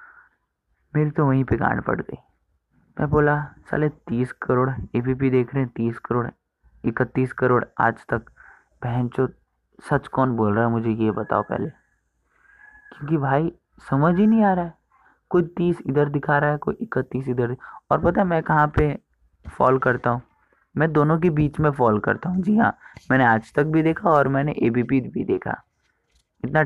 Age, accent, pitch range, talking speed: 20-39, native, 120-150 Hz, 180 wpm